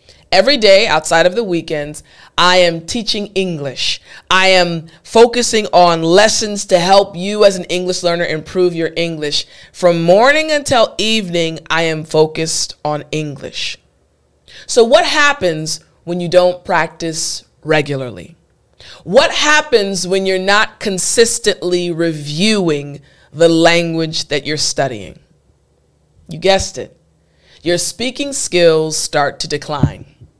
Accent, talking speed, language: American, 125 wpm, English